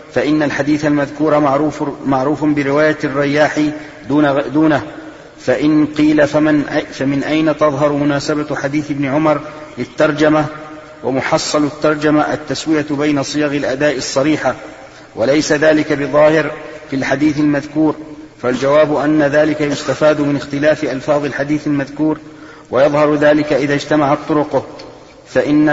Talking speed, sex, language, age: 110 wpm, male, Arabic, 40-59